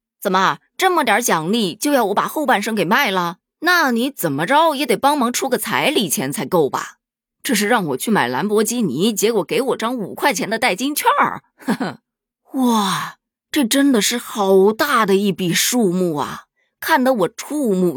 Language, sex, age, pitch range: Chinese, female, 20-39, 175-250 Hz